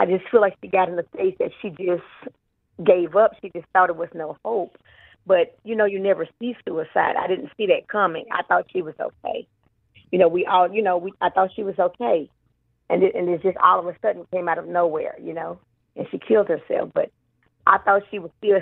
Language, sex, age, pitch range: English, female, 40-59, 175-210 Hz